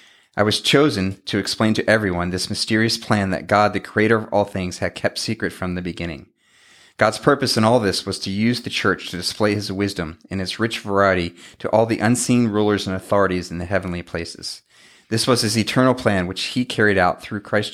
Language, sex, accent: English, male, American